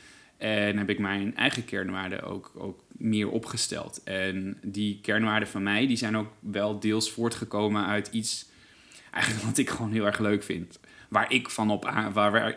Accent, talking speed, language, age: Dutch, 180 wpm, Dutch, 20-39